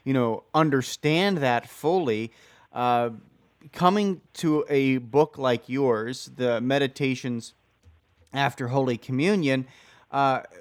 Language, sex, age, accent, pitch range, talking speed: English, male, 30-49, American, 125-155 Hz, 100 wpm